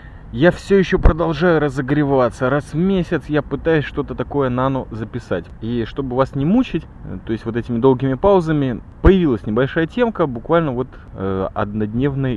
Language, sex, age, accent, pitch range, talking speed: Russian, male, 20-39, native, 110-145 Hz, 155 wpm